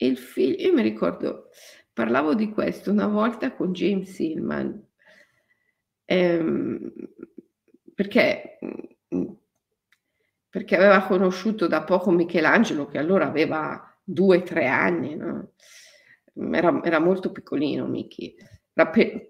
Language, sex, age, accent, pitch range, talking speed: Italian, female, 50-69, native, 190-295 Hz, 110 wpm